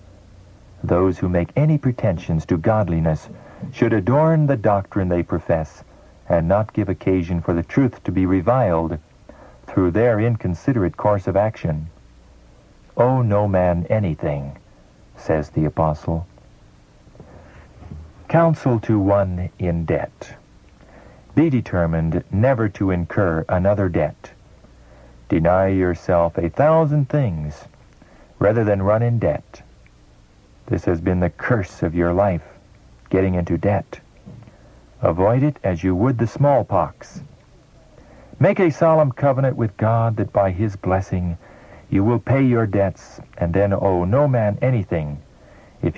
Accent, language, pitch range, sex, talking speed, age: American, English, 85-115 Hz, male, 130 wpm, 50-69